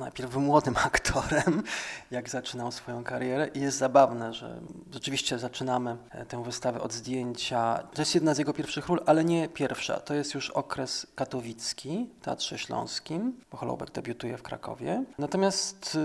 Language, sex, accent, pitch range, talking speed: Polish, male, native, 130-160 Hz, 150 wpm